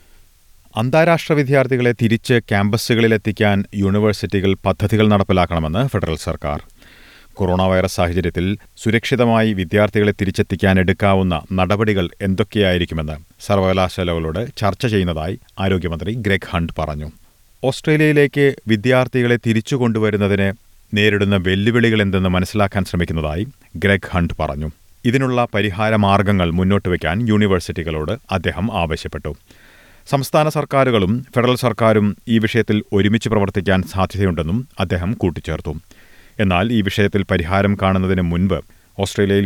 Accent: native